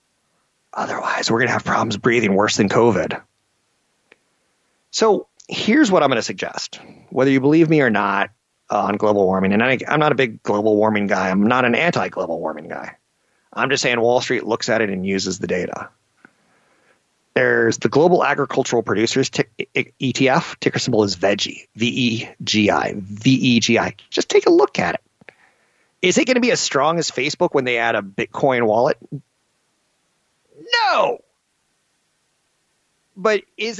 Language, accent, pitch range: English, American, 100-150 Hz